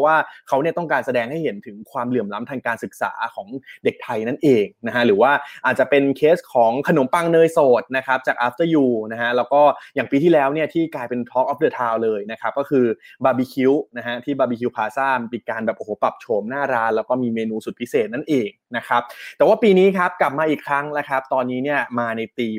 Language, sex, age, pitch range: Thai, male, 20-39, 120-150 Hz